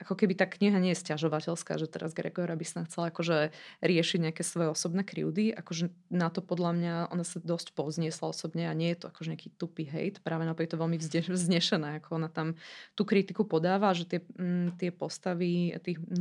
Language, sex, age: Slovak, female, 20-39